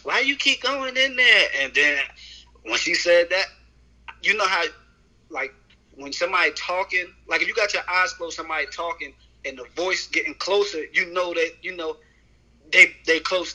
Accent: American